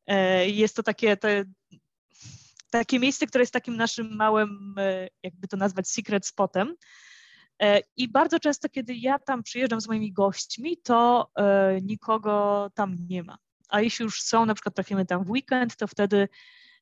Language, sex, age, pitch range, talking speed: Polish, female, 20-39, 185-225 Hz, 155 wpm